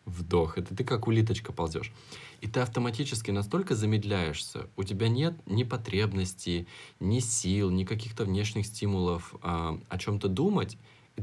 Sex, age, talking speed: male, 20-39, 145 wpm